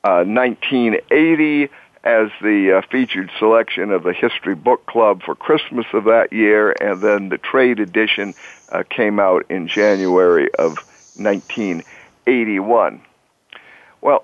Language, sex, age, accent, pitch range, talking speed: English, male, 60-79, American, 115-140 Hz, 120 wpm